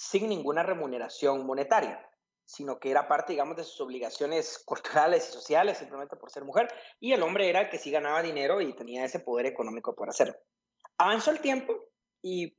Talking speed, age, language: 185 wpm, 30-49, Spanish